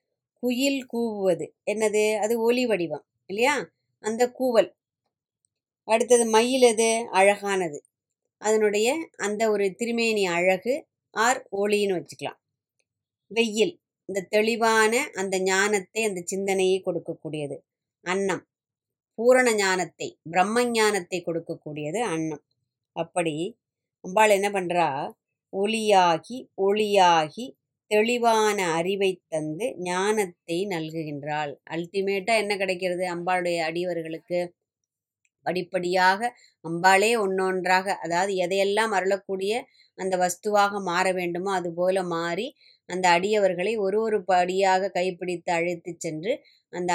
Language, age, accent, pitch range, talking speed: Tamil, 20-39, native, 170-215 Hz, 90 wpm